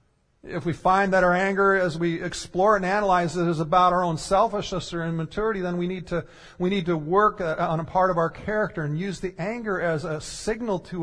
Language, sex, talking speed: English, male, 225 wpm